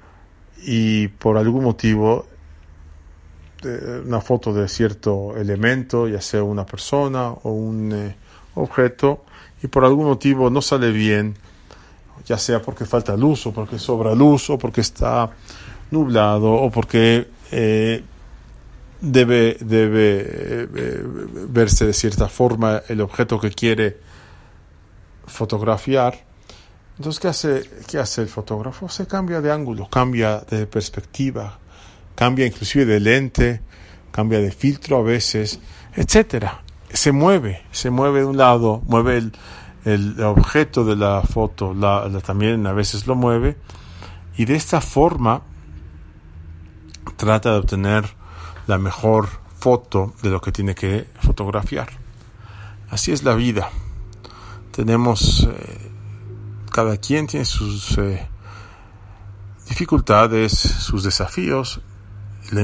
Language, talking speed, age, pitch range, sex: English, 125 wpm, 40-59, 100-120 Hz, male